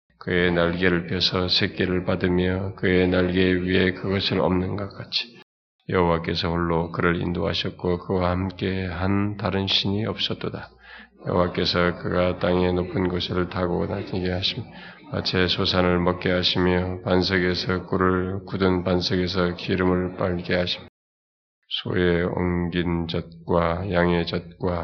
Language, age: Korean, 20-39